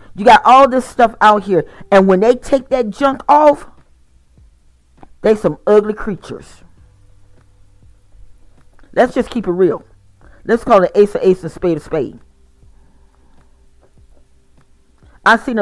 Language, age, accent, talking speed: English, 40-59, American, 135 wpm